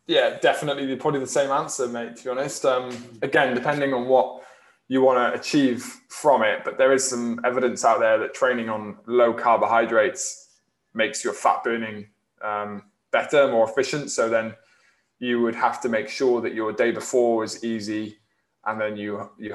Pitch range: 110-130 Hz